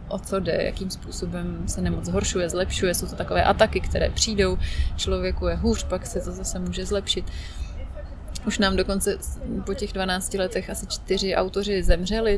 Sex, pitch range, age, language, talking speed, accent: female, 180-205 Hz, 30-49, Czech, 170 wpm, native